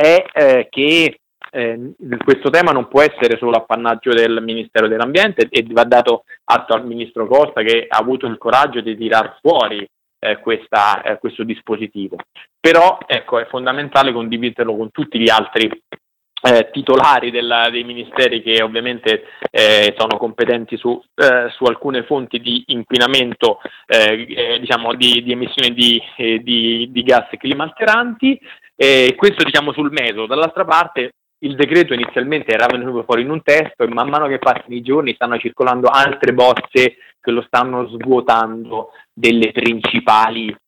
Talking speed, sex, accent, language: 155 wpm, male, native, Italian